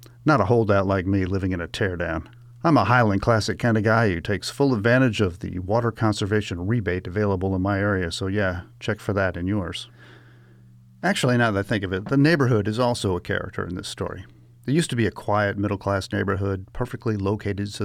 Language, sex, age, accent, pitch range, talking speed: English, male, 40-59, American, 95-120 Hz, 210 wpm